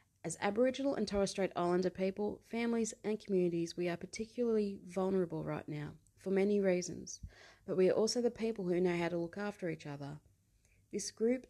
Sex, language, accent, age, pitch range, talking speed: female, English, Australian, 30-49, 150-200 Hz, 185 wpm